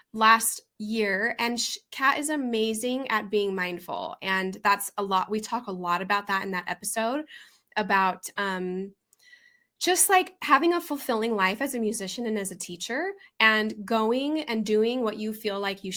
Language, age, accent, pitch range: English, 10-29, American, 210-285 Hz